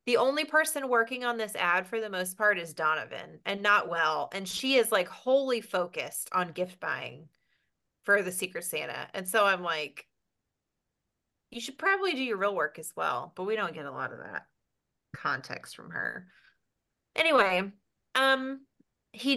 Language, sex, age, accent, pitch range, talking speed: English, female, 30-49, American, 185-245 Hz, 175 wpm